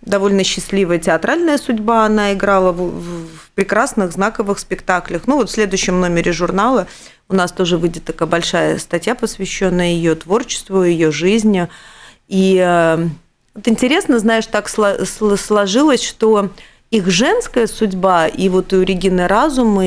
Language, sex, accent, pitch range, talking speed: Russian, female, native, 185-230 Hz, 135 wpm